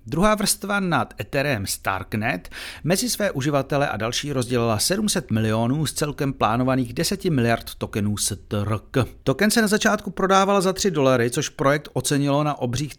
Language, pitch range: Czech, 120-165 Hz